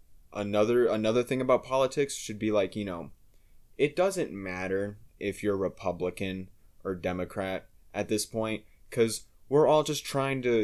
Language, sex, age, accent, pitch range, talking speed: English, male, 20-39, American, 95-120 Hz, 150 wpm